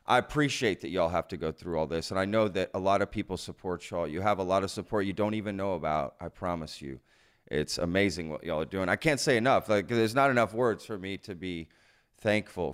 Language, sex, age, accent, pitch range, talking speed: English, male, 30-49, American, 85-110 Hz, 255 wpm